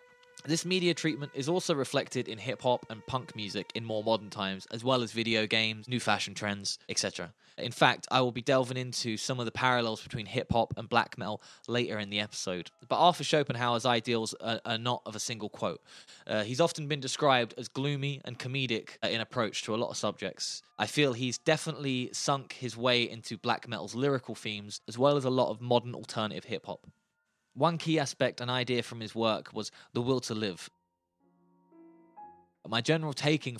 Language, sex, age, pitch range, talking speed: English, male, 20-39, 110-130 Hz, 190 wpm